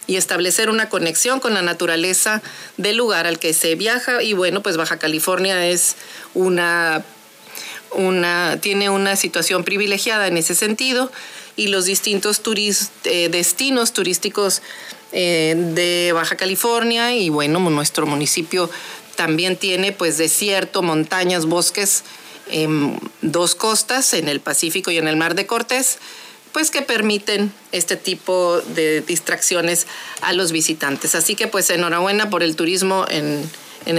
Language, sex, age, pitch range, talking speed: Spanish, female, 40-59, 165-200 Hz, 140 wpm